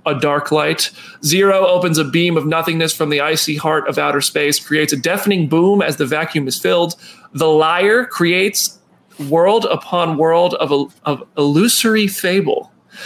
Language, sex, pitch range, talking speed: English, male, 150-185 Hz, 160 wpm